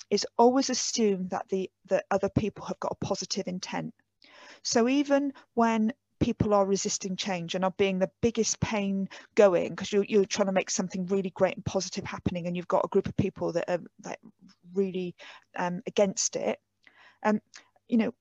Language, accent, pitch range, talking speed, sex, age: English, British, 185-220 Hz, 190 wpm, female, 40-59